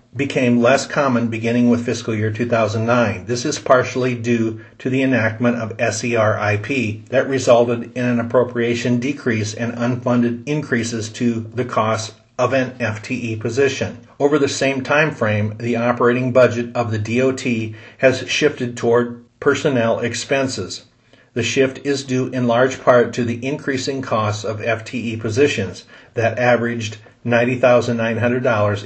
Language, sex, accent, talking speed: English, male, American, 145 wpm